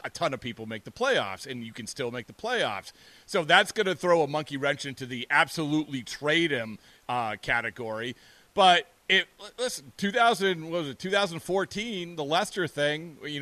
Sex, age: male, 30-49